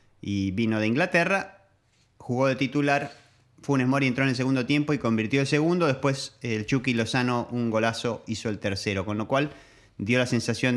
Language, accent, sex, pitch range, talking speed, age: Spanish, Argentinian, male, 105-140 Hz, 185 wpm, 30-49